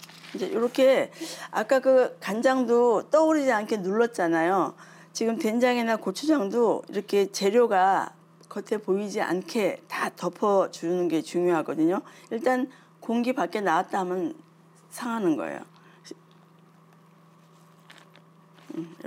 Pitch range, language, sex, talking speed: 170-225 Hz, English, female, 90 wpm